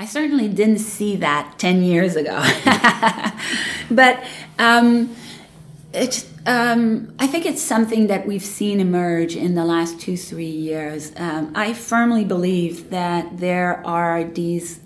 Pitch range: 165-205 Hz